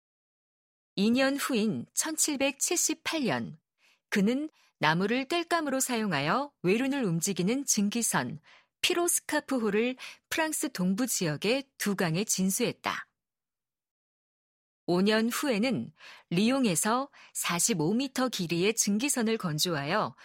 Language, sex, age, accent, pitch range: Korean, female, 40-59, native, 185-265 Hz